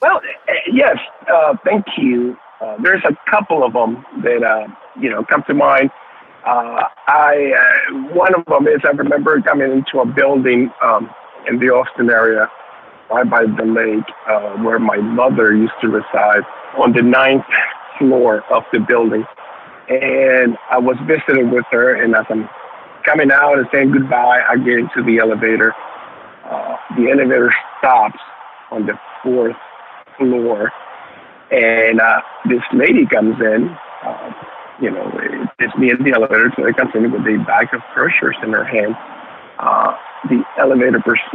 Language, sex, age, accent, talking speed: English, male, 50-69, American, 165 wpm